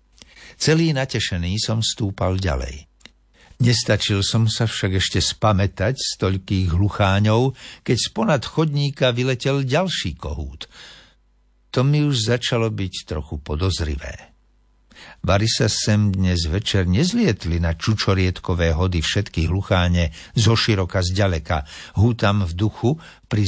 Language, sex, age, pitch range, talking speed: Slovak, male, 60-79, 90-125 Hz, 120 wpm